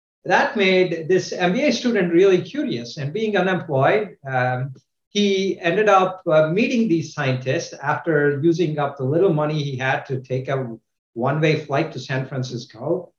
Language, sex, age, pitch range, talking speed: English, male, 50-69, 135-185 Hz, 155 wpm